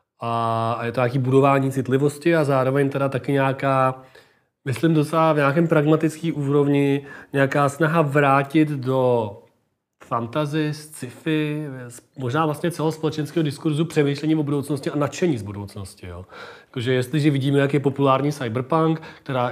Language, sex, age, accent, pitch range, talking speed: Czech, male, 30-49, native, 120-150 Hz, 130 wpm